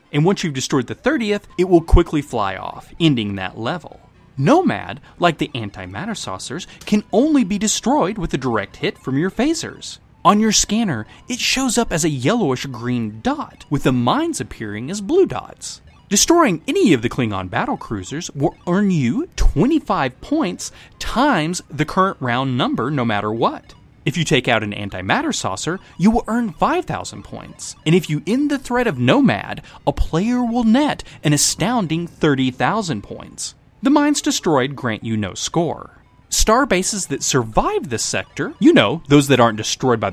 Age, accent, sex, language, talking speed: 20-39, American, male, English, 170 wpm